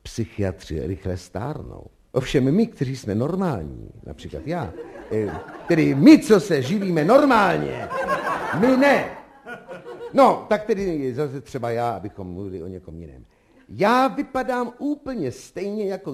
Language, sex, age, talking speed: Czech, male, 50-69, 125 wpm